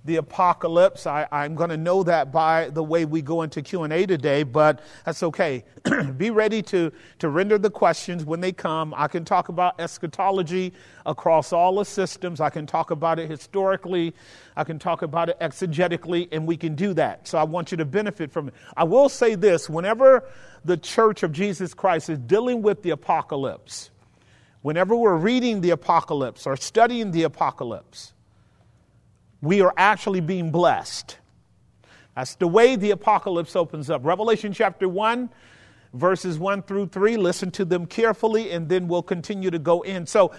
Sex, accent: male, American